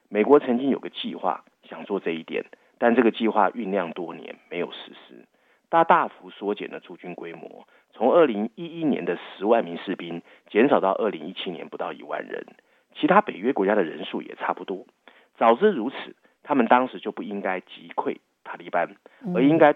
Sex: male